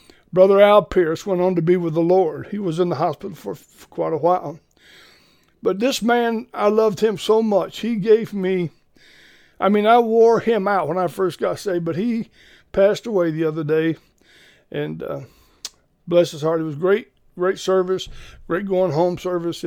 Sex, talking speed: male, 190 wpm